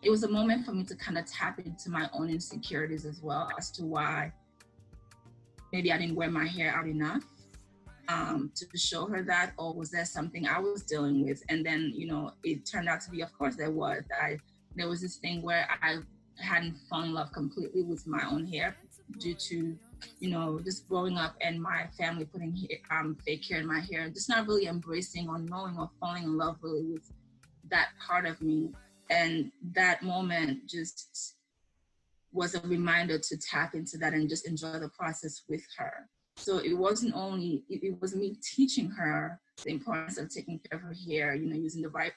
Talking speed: 205 wpm